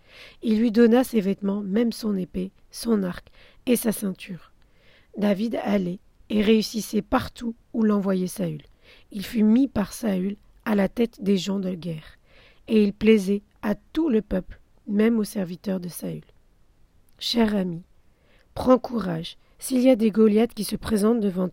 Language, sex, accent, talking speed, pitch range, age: French, female, French, 160 wpm, 190-230 Hz, 40-59